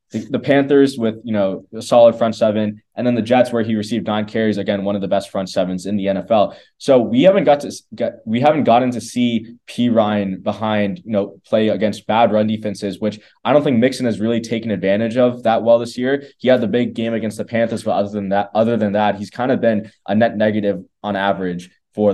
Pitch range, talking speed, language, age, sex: 100-120 Hz, 240 wpm, English, 20-39, male